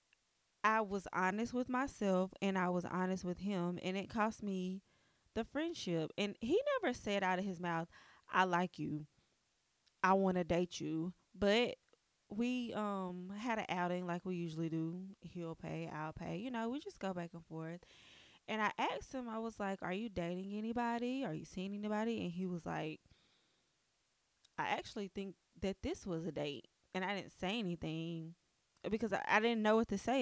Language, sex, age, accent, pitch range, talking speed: English, female, 20-39, American, 175-225 Hz, 185 wpm